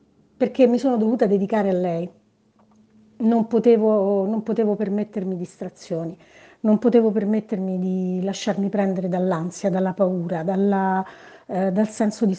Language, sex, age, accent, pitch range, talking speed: Italian, female, 40-59, native, 180-210 Hz, 120 wpm